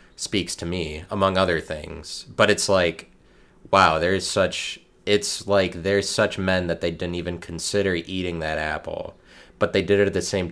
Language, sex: English, male